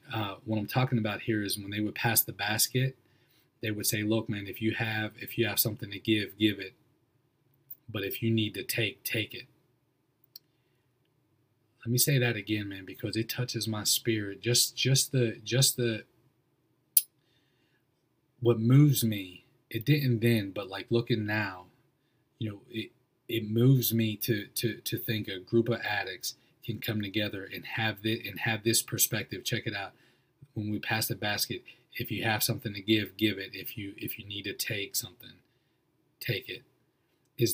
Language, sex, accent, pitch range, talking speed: English, male, American, 105-125 Hz, 180 wpm